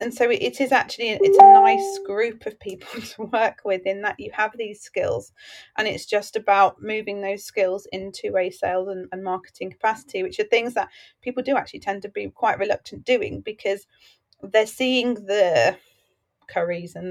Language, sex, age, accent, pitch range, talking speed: English, female, 30-49, British, 190-235 Hz, 185 wpm